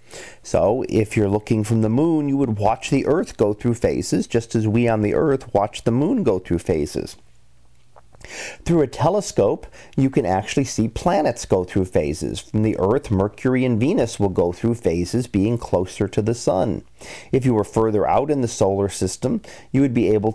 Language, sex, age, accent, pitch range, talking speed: English, male, 40-59, American, 105-130 Hz, 195 wpm